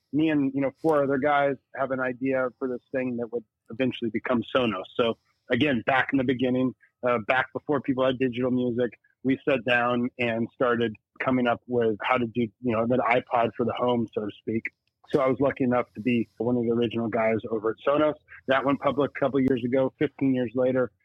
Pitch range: 115-135 Hz